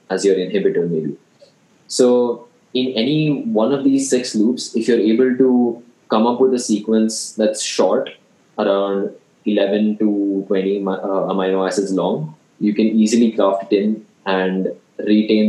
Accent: Indian